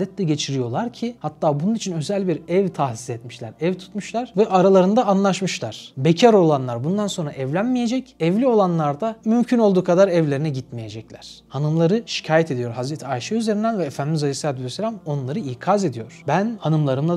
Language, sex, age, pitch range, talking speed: Turkish, male, 30-49, 135-185 Hz, 155 wpm